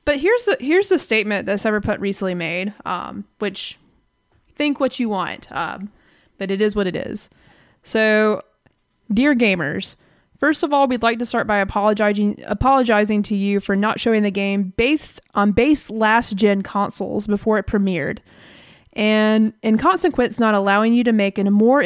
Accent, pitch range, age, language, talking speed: American, 200-240 Hz, 20-39, English, 165 wpm